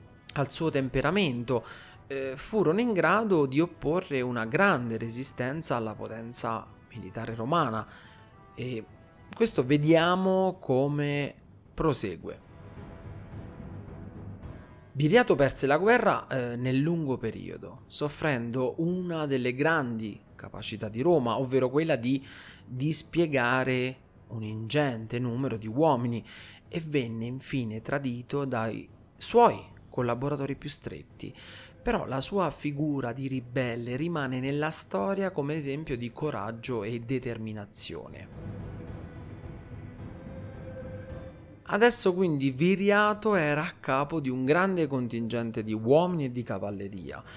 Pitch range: 115-150 Hz